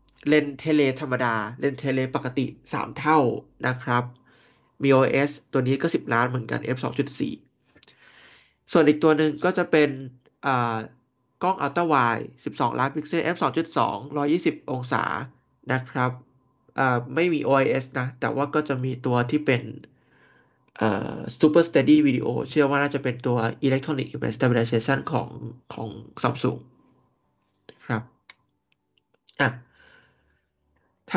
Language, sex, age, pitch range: Thai, male, 20-39, 125-150 Hz